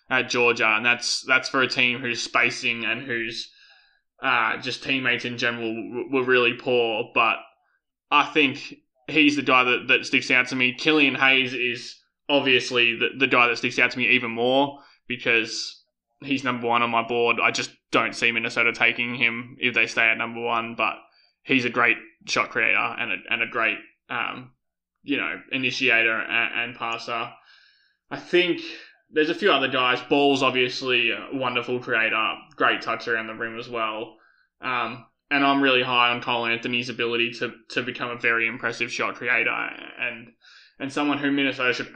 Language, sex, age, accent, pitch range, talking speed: English, male, 20-39, Australian, 120-135 Hz, 180 wpm